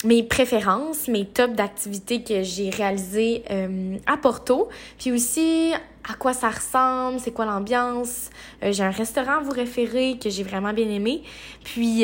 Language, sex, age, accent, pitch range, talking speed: French, female, 20-39, Canadian, 200-255 Hz, 165 wpm